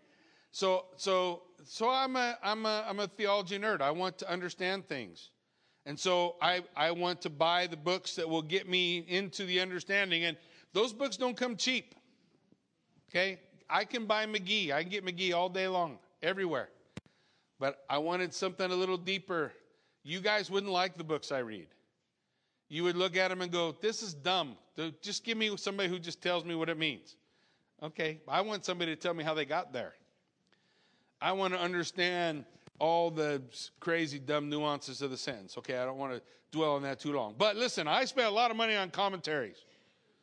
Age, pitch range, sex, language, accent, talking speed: 50-69, 150-195 Hz, male, English, American, 195 wpm